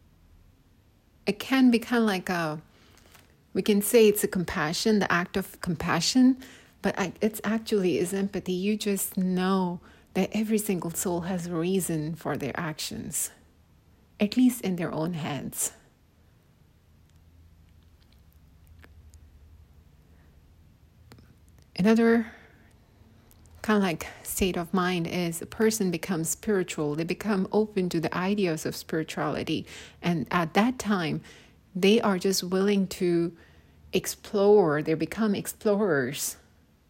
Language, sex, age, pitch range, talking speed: English, female, 30-49, 145-205 Hz, 120 wpm